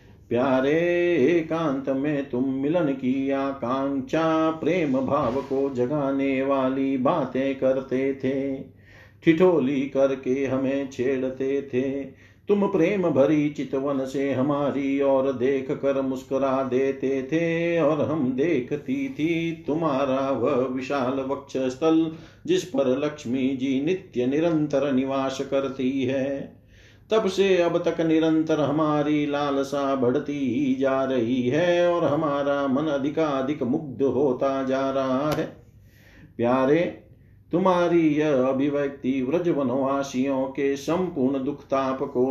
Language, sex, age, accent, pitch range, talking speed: Hindi, male, 50-69, native, 130-145 Hz, 115 wpm